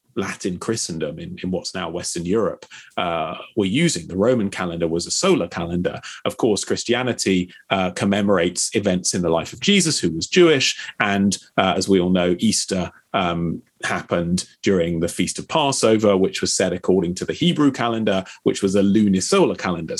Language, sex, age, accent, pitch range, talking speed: English, male, 30-49, British, 90-115 Hz, 175 wpm